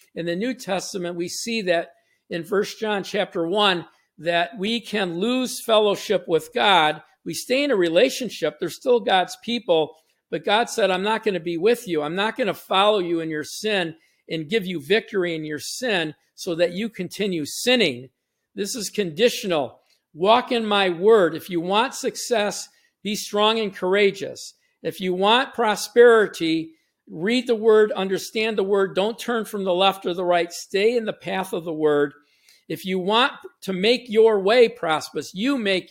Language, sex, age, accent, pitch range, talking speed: English, male, 50-69, American, 165-215 Hz, 180 wpm